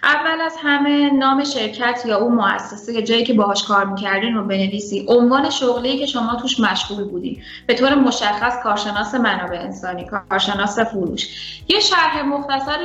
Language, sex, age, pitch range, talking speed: Persian, female, 10-29, 205-270 Hz, 160 wpm